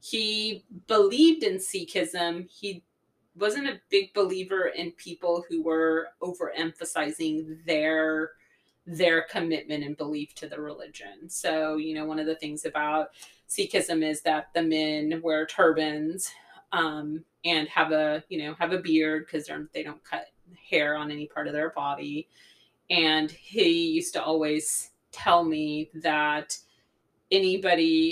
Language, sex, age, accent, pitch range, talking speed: English, female, 30-49, American, 155-175 Hz, 140 wpm